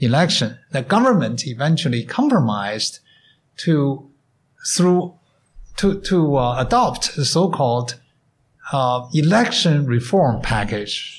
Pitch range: 120-160 Hz